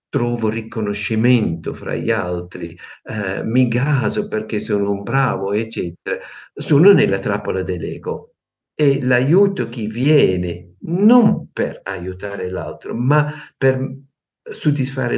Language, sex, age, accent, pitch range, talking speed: Italian, male, 50-69, native, 105-140 Hz, 110 wpm